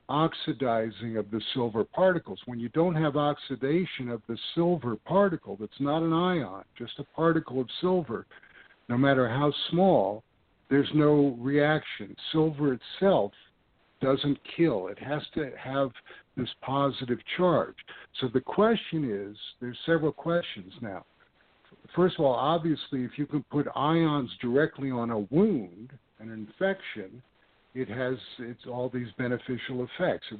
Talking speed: 140 wpm